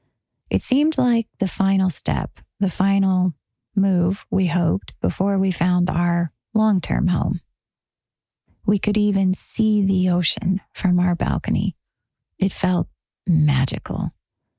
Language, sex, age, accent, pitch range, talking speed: English, female, 30-49, American, 170-195 Hz, 120 wpm